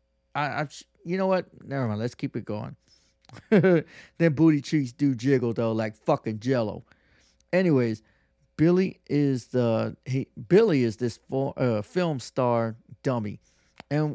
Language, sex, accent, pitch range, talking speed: English, male, American, 110-150 Hz, 140 wpm